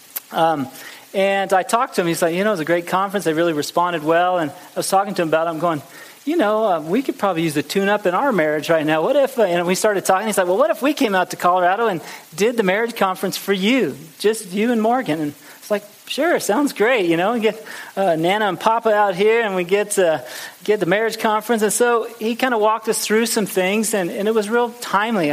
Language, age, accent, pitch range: English, 30-49, American, 165-215 Hz